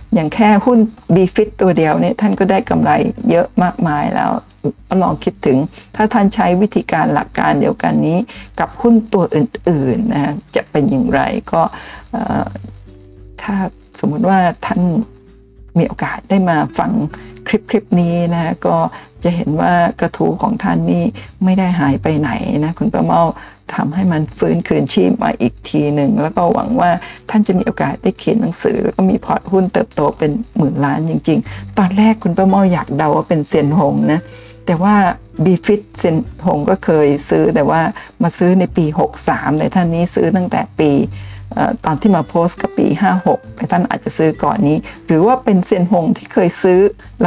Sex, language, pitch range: female, Thai, 155-210 Hz